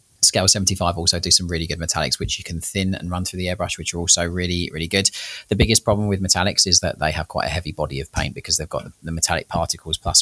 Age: 30-49